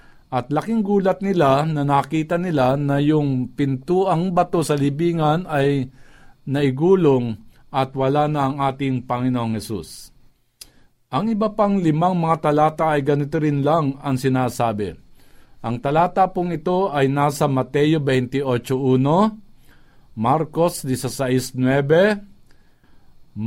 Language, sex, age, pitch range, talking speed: Filipino, male, 50-69, 130-165 Hz, 115 wpm